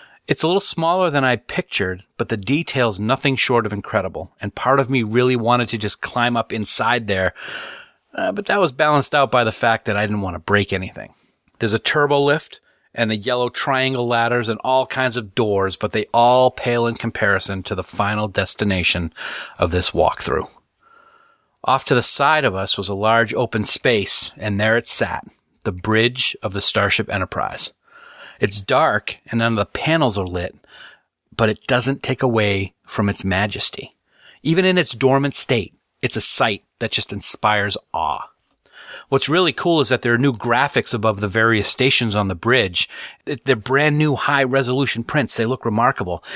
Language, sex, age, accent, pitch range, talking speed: English, male, 40-59, American, 105-140 Hz, 185 wpm